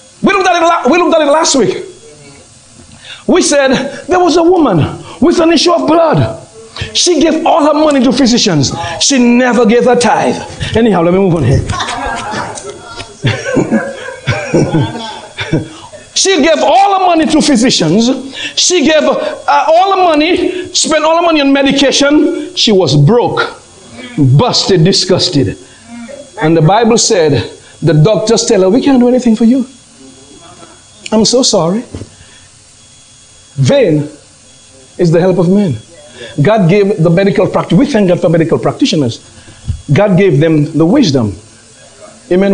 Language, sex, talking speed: English, male, 145 wpm